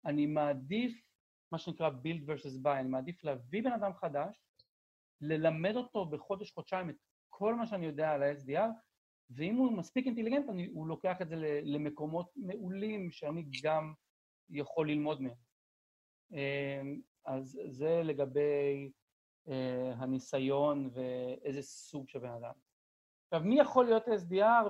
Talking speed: 125 wpm